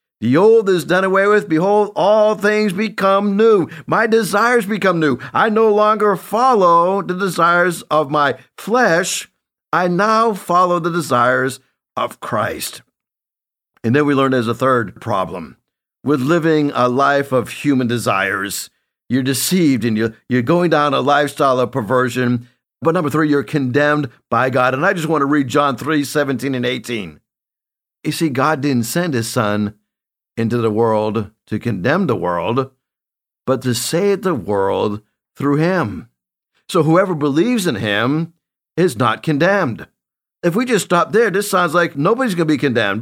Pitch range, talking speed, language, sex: 125-185 Hz, 160 wpm, English, male